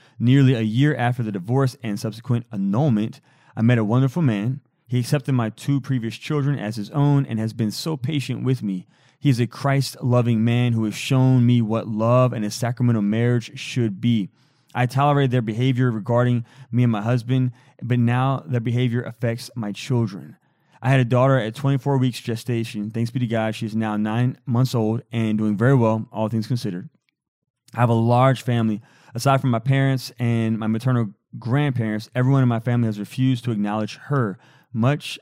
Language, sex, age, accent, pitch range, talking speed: English, male, 20-39, American, 115-130 Hz, 190 wpm